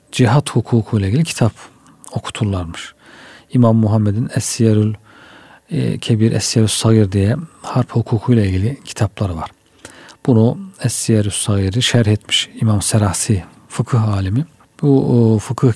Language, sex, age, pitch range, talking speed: Turkish, male, 40-59, 110-125 Hz, 115 wpm